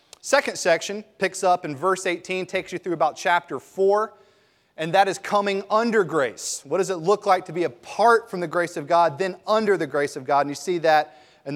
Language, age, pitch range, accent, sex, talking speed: English, 30-49, 150-195 Hz, American, male, 225 wpm